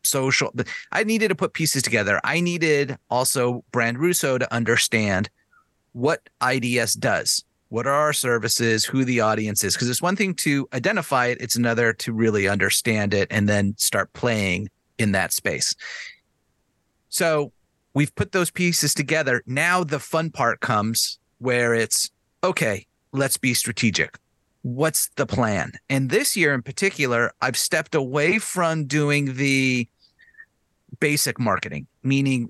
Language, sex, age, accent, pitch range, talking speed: English, male, 30-49, American, 115-140 Hz, 145 wpm